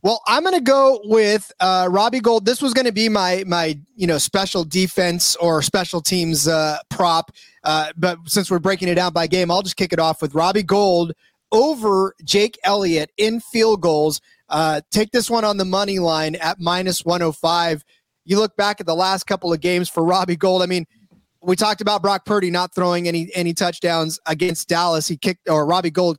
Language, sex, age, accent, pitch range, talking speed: English, male, 30-49, American, 160-190 Hz, 205 wpm